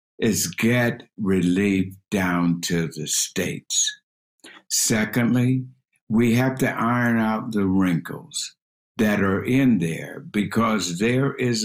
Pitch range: 85-120 Hz